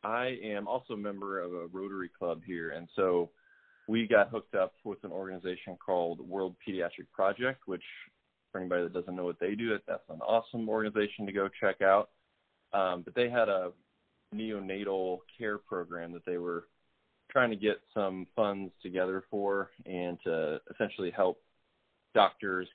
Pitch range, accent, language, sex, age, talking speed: 90-105 Hz, American, English, male, 20-39, 165 wpm